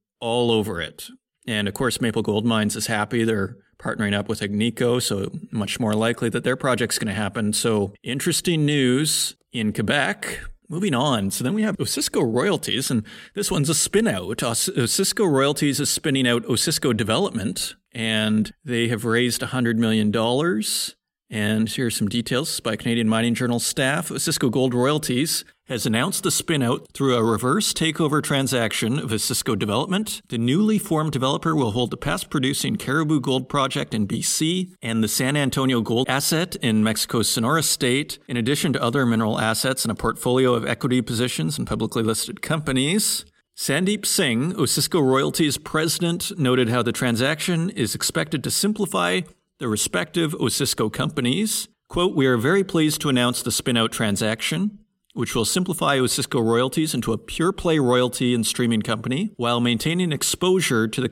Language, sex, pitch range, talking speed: English, male, 115-155 Hz, 165 wpm